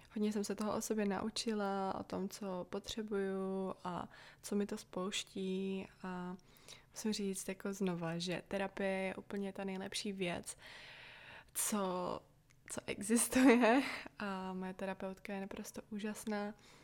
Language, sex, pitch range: Czech, female, 185-205 Hz